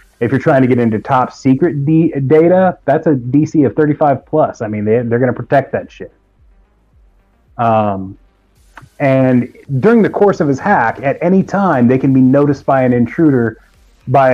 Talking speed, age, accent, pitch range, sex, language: 175 wpm, 30-49, American, 105-140 Hz, male, English